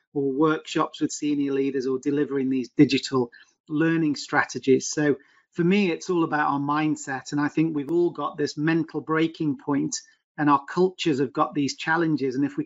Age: 40-59